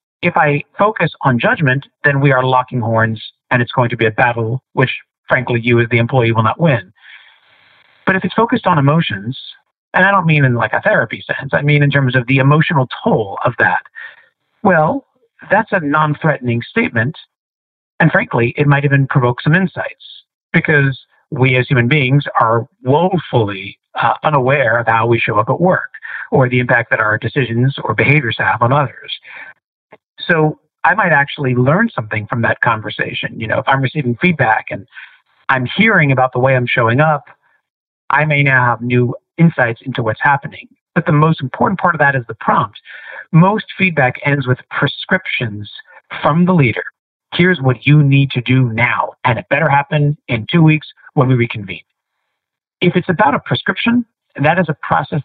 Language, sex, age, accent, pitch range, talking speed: English, male, 50-69, American, 120-155 Hz, 180 wpm